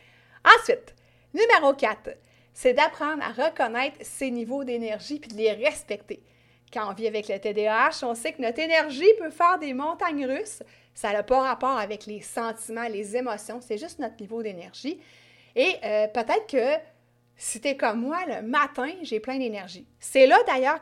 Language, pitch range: French, 215-285 Hz